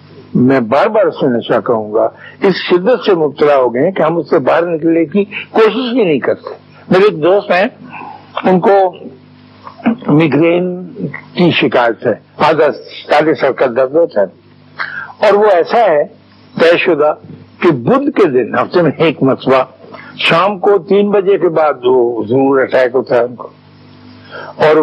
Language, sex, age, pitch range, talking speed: Urdu, male, 60-79, 140-195 Hz, 160 wpm